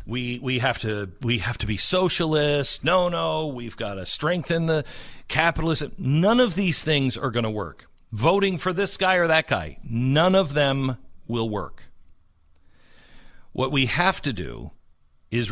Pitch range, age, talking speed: 110-175 Hz, 50-69, 165 wpm